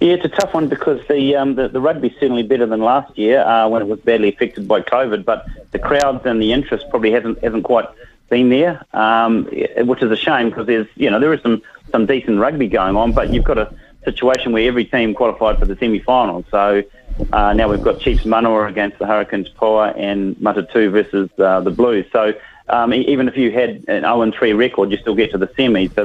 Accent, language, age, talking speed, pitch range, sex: Australian, English, 40-59, 230 wpm, 100-120 Hz, male